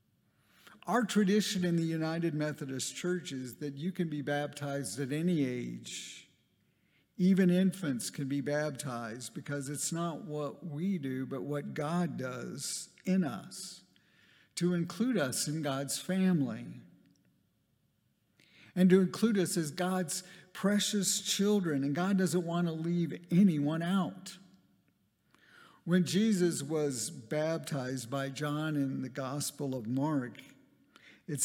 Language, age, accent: English, 50-69, American